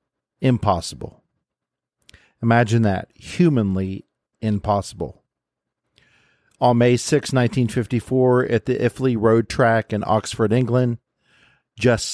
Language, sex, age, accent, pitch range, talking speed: English, male, 50-69, American, 100-120 Hz, 90 wpm